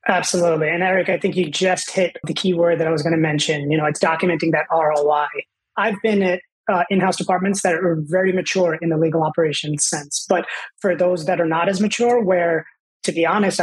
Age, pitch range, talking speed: 20-39, 165-195 Hz, 215 wpm